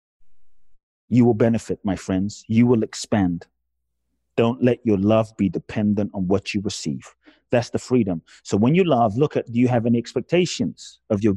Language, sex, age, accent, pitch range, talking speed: English, male, 30-49, British, 95-125 Hz, 180 wpm